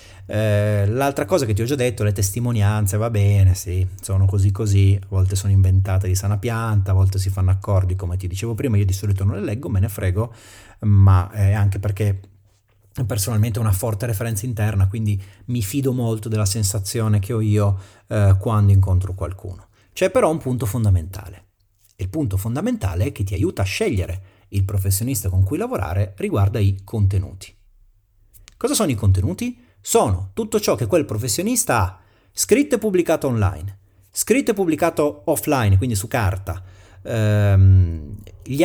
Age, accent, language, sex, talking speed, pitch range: 30-49, native, Italian, male, 170 wpm, 95-135 Hz